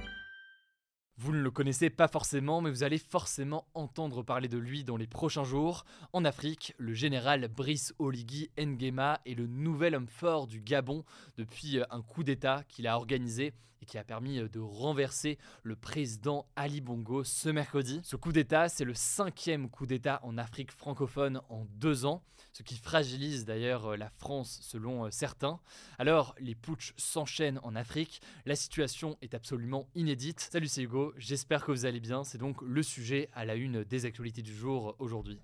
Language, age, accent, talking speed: French, 20-39, French, 175 wpm